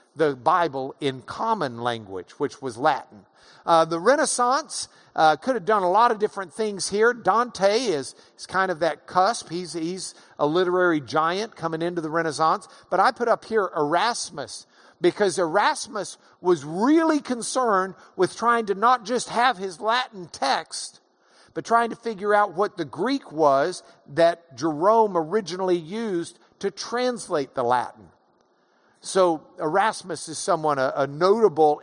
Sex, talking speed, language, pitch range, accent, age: male, 155 wpm, English, 160-210 Hz, American, 50-69